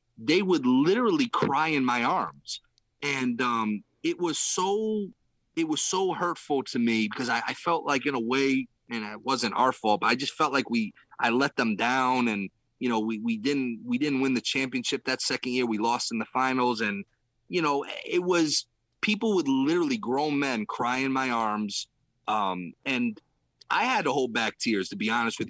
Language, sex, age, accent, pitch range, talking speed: English, male, 30-49, American, 115-160 Hz, 200 wpm